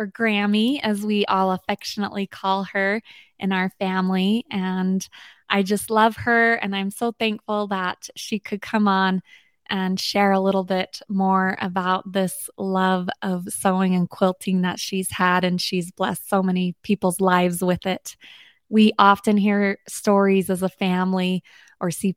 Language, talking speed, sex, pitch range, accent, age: English, 160 wpm, female, 185-215 Hz, American, 20-39